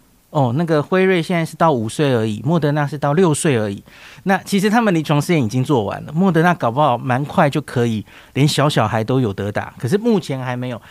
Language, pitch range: Chinese, 125-185 Hz